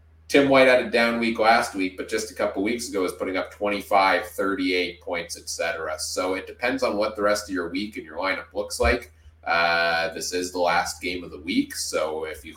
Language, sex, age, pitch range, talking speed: English, male, 30-49, 80-120 Hz, 235 wpm